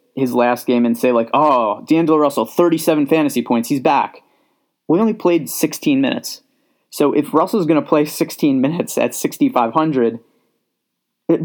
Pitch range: 125-165 Hz